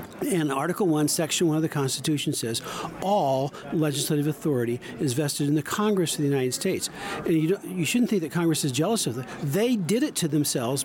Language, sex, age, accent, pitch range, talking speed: English, male, 50-69, American, 145-180 Hz, 210 wpm